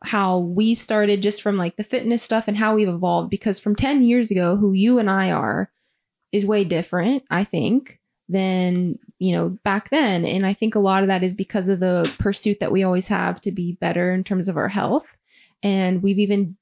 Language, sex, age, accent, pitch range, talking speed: English, female, 20-39, American, 180-215 Hz, 215 wpm